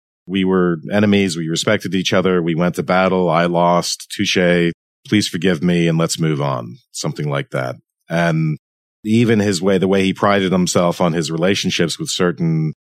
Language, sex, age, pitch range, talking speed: English, male, 40-59, 80-95 Hz, 175 wpm